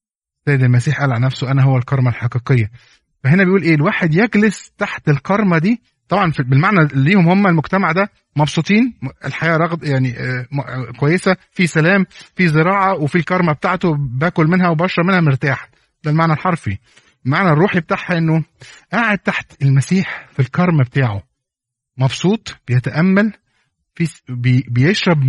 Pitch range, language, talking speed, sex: 130-175 Hz, Arabic, 135 wpm, male